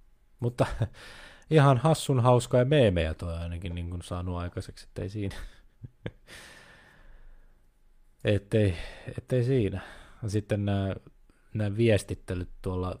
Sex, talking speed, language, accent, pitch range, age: male, 95 wpm, Finnish, native, 90-110 Hz, 20-39